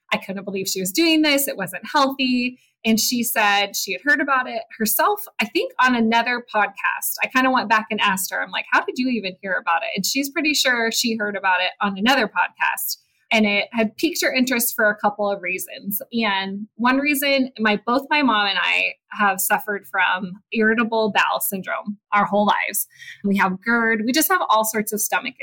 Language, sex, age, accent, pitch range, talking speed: English, female, 20-39, American, 205-255 Hz, 215 wpm